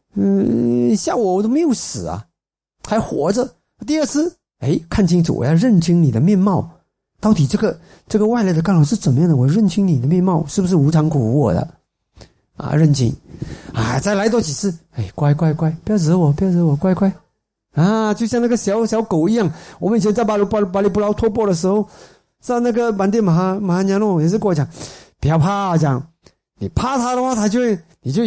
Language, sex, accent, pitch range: Chinese, male, native, 150-220 Hz